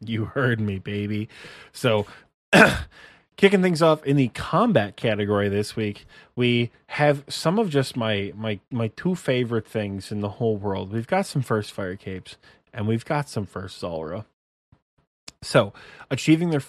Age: 20-39